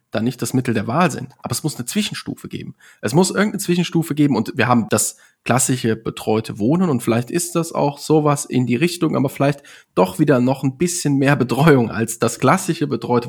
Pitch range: 115-150 Hz